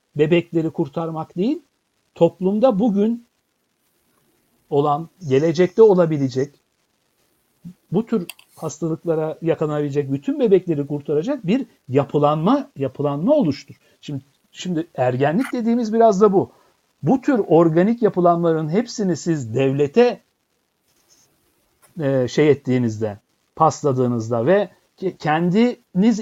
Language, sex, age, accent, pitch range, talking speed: Turkish, male, 60-79, native, 150-220 Hz, 85 wpm